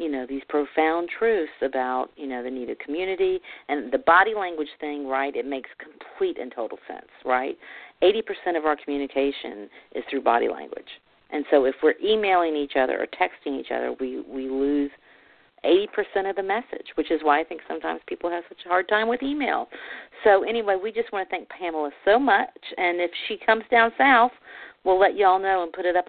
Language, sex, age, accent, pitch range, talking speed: English, female, 50-69, American, 145-195 Hz, 205 wpm